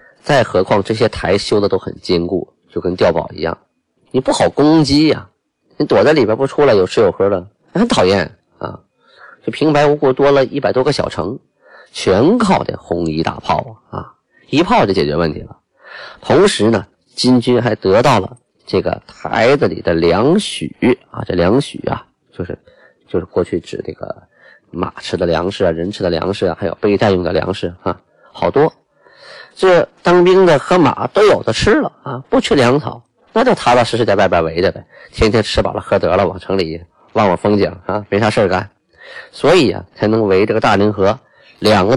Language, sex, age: Chinese, male, 30-49